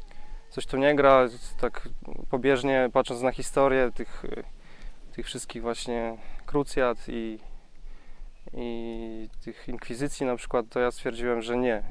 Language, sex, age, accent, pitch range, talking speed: Polish, male, 20-39, native, 120-135 Hz, 125 wpm